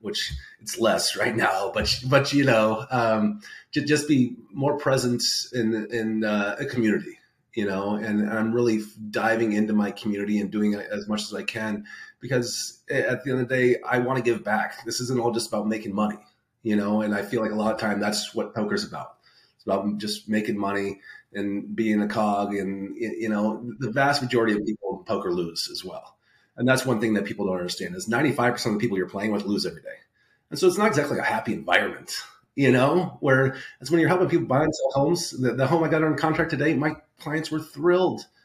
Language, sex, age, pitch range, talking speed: English, male, 30-49, 105-155 Hz, 230 wpm